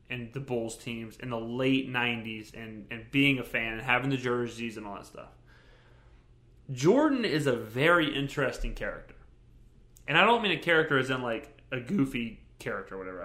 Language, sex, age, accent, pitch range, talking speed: English, male, 20-39, American, 120-145 Hz, 185 wpm